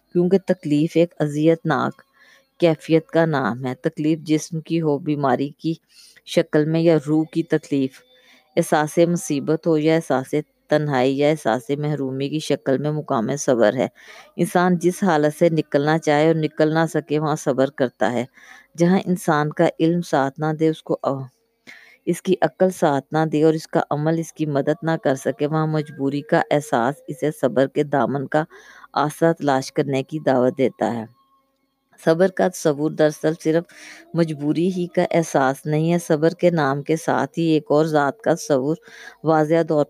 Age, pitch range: 20-39, 145-165 Hz